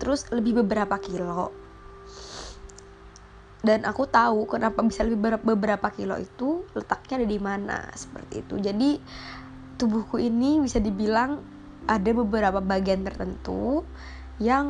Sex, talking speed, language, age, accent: female, 120 wpm, Indonesian, 20-39, native